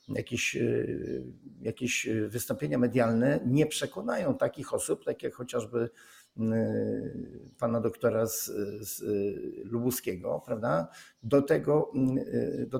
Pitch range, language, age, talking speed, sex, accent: 120-140 Hz, Polish, 50-69, 90 wpm, male, native